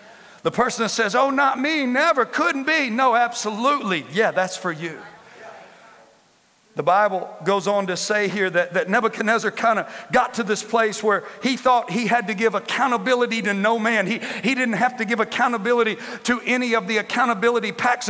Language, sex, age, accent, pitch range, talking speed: English, male, 50-69, American, 200-240 Hz, 185 wpm